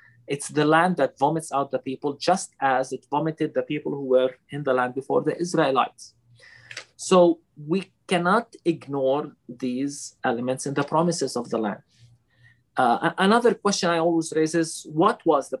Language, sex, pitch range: English, male, 130-175 Hz